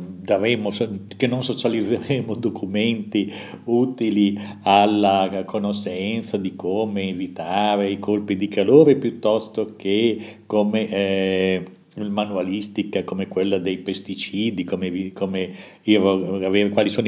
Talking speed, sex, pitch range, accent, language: 100 wpm, male, 95-120 Hz, native, Italian